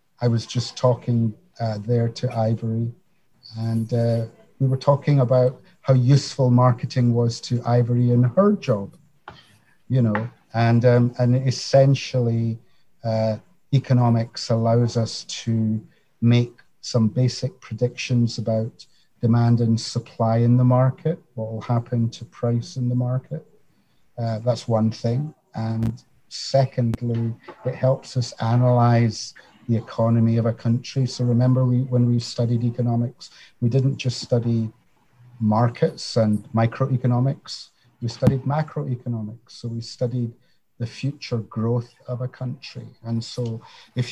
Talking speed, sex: 130 wpm, male